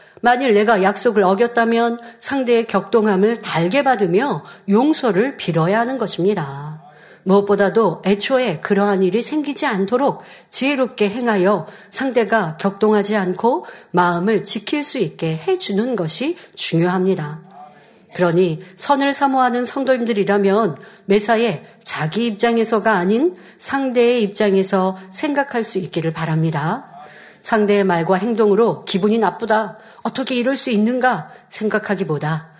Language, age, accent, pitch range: Korean, 50-69, native, 190-245 Hz